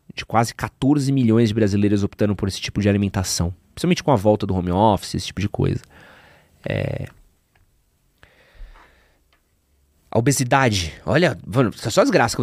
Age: 20-39